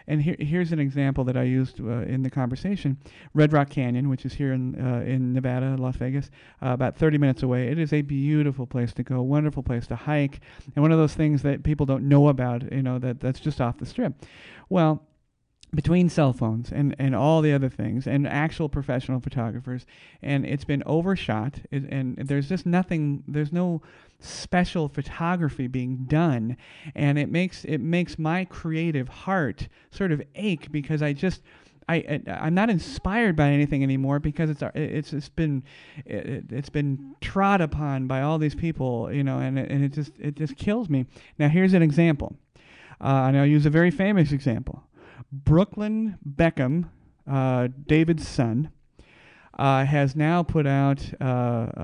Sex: male